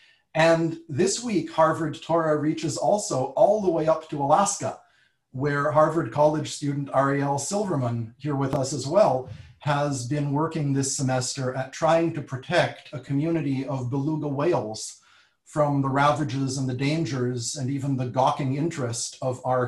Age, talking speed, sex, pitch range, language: 40-59, 155 wpm, male, 130-155 Hz, English